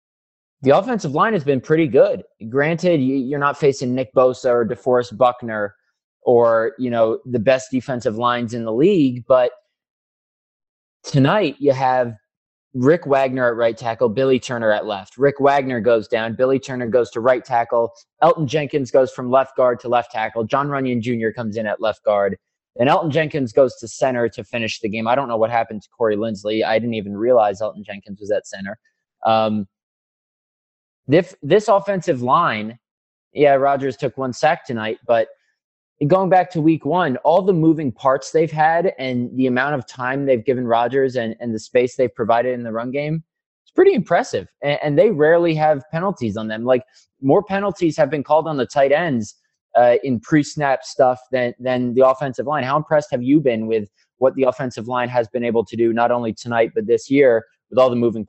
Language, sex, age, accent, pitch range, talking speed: English, male, 20-39, American, 115-145 Hz, 195 wpm